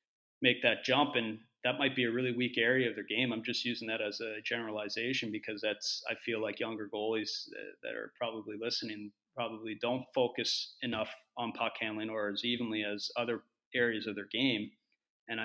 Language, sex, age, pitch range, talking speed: English, male, 30-49, 110-120 Hz, 190 wpm